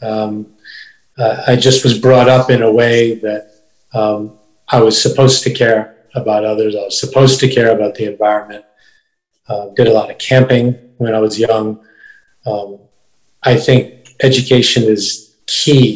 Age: 40-59